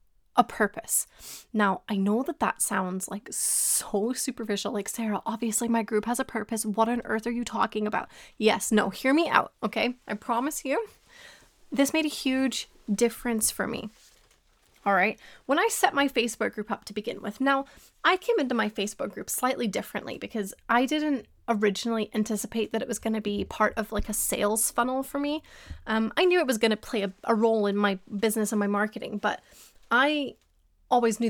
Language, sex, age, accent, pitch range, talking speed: English, female, 20-39, American, 210-235 Hz, 200 wpm